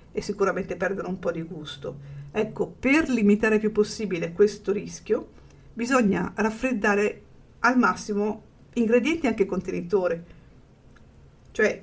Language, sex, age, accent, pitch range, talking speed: Italian, female, 50-69, native, 195-230 Hz, 115 wpm